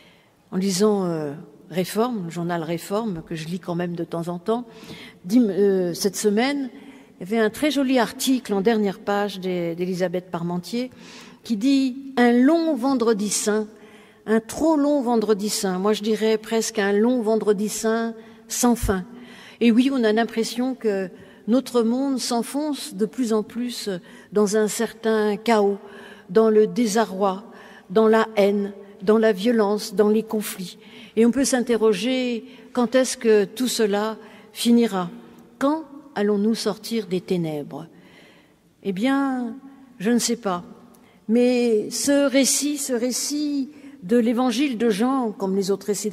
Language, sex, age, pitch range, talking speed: French, female, 50-69, 205-250 Hz, 150 wpm